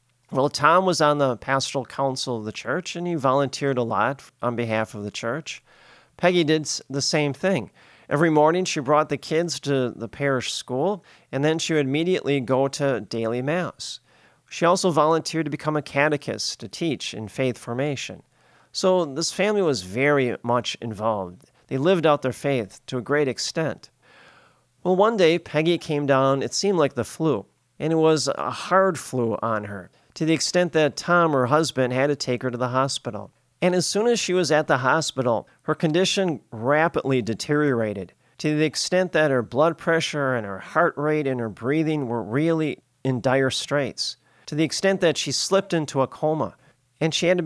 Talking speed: 190 wpm